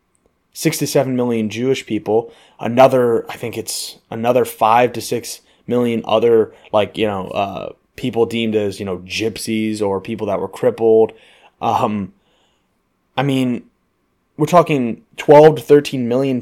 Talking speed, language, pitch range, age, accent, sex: 145 wpm, English, 110-135 Hz, 20-39, American, male